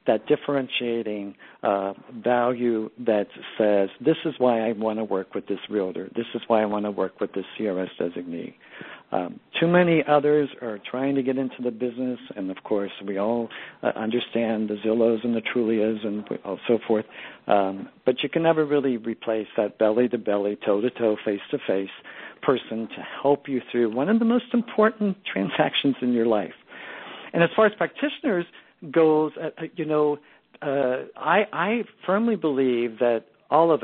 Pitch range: 110-155 Hz